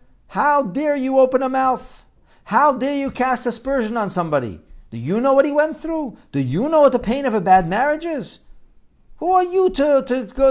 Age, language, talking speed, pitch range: 50-69, English, 210 wpm, 110-155 Hz